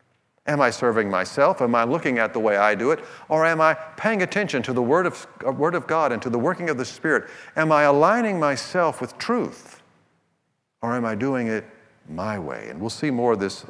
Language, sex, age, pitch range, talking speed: English, male, 50-69, 115-160 Hz, 225 wpm